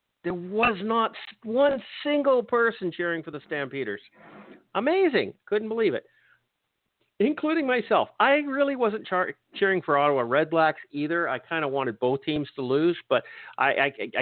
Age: 50-69